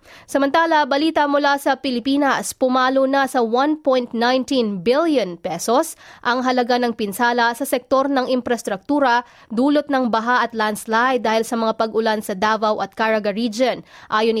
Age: 20-39